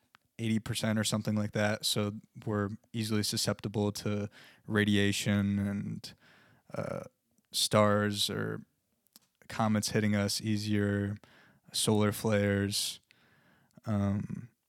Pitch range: 105-115 Hz